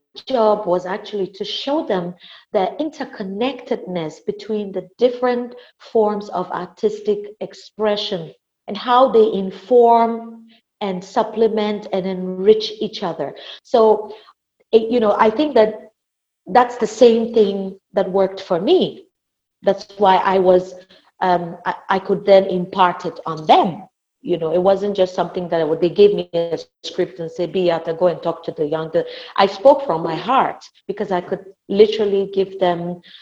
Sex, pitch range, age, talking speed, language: female, 180-220 Hz, 40-59, 150 wpm, English